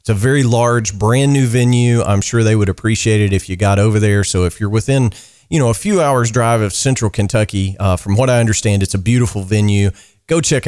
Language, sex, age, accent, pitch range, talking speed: English, male, 40-59, American, 100-125 Hz, 235 wpm